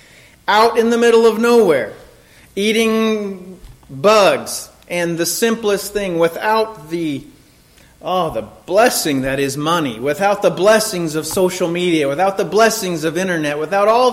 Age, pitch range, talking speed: 40-59, 130-195 Hz, 140 wpm